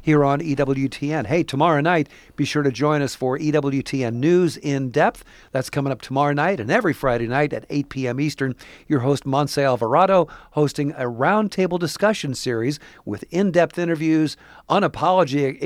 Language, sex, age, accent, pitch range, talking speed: English, male, 50-69, American, 135-165 Hz, 155 wpm